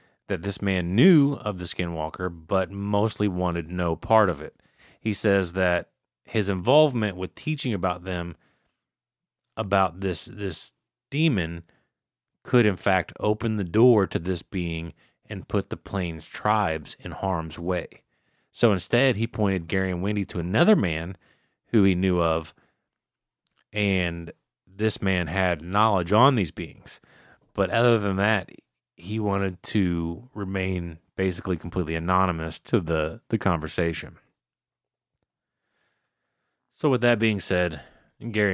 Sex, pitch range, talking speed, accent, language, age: male, 85-110 Hz, 135 wpm, American, English, 30-49